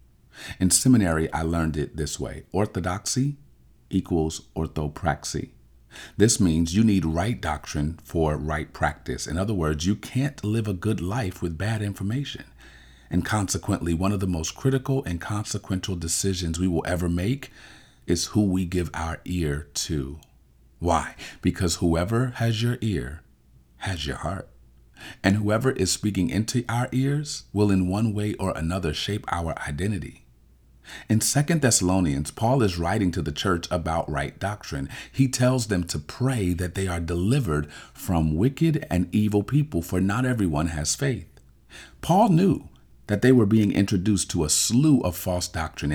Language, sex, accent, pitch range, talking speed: English, male, American, 80-110 Hz, 160 wpm